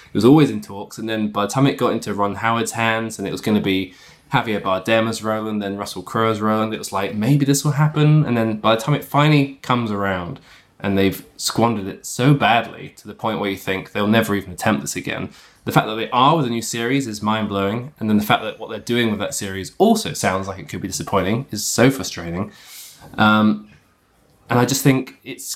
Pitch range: 100-130 Hz